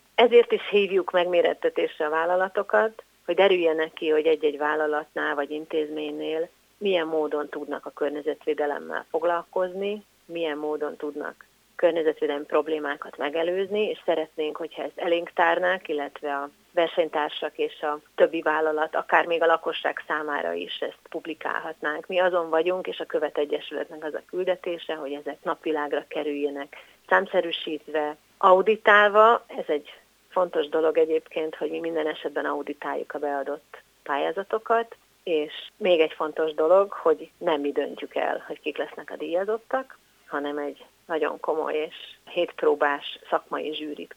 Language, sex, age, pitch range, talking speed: Hungarian, female, 30-49, 150-205 Hz, 135 wpm